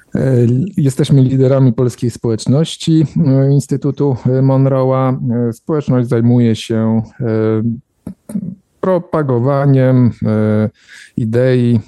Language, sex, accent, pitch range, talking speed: Polish, male, native, 110-130 Hz, 55 wpm